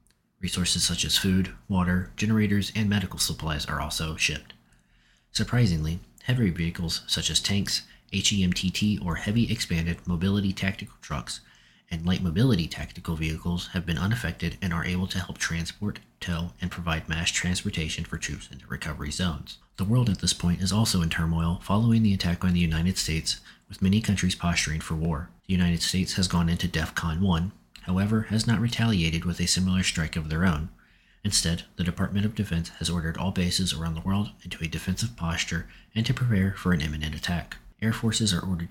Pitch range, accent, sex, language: 85-100 Hz, American, male, English